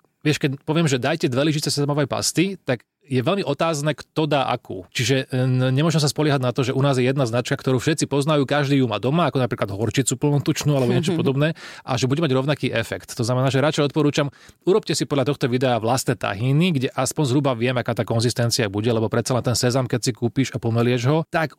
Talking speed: 220 wpm